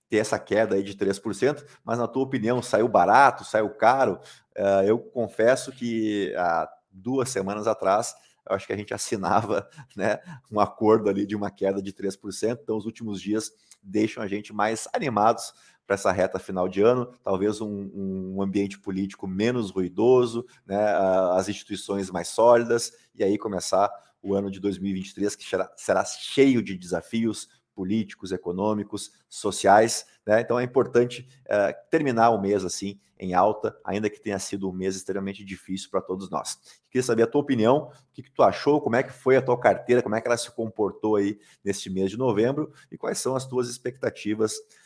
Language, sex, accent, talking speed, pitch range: Portuguese, male, Brazilian, 180 wpm, 100-120 Hz